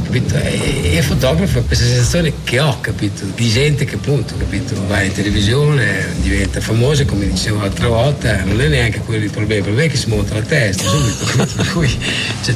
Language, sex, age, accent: Italian, male, 50-69, native